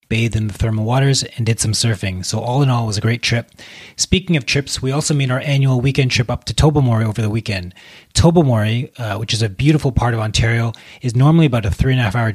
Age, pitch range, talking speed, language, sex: 30-49, 110-135 Hz, 255 wpm, English, male